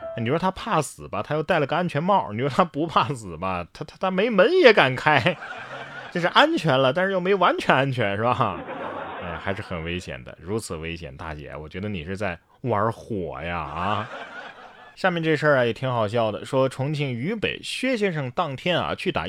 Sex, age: male, 30-49